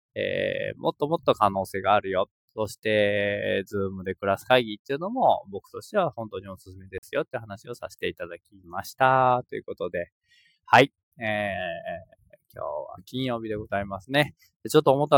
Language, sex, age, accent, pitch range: Japanese, male, 20-39, native, 100-135 Hz